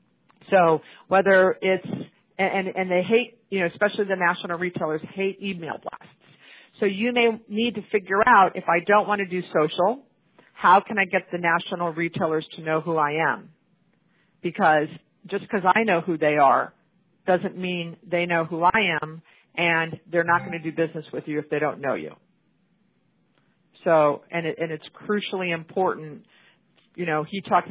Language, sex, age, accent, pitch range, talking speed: English, female, 50-69, American, 165-195 Hz, 185 wpm